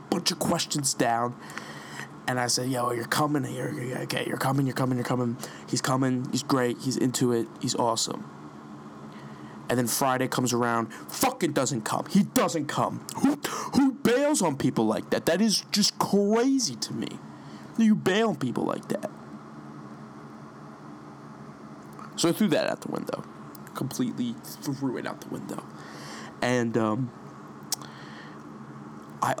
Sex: male